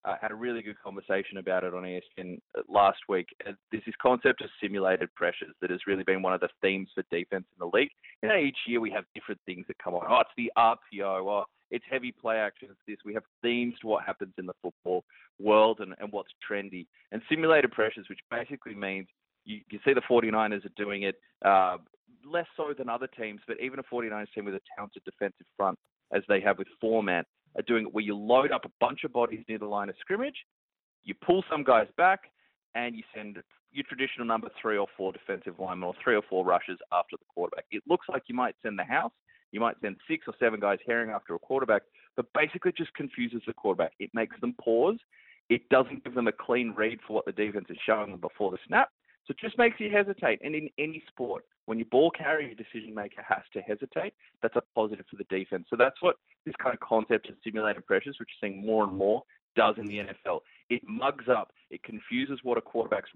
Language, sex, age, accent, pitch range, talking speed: English, male, 20-39, Australian, 100-135 Hz, 225 wpm